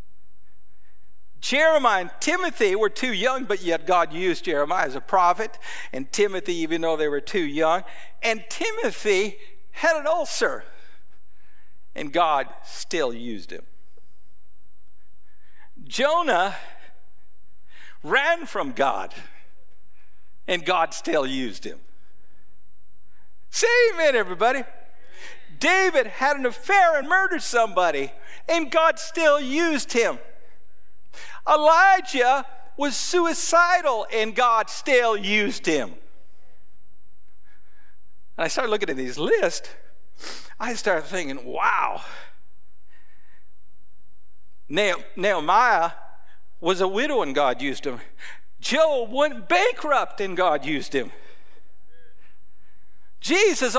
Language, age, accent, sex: English, 60-79, American, male